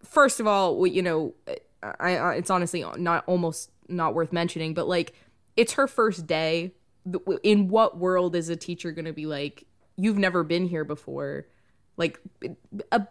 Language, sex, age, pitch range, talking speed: English, female, 20-39, 165-215 Hz, 170 wpm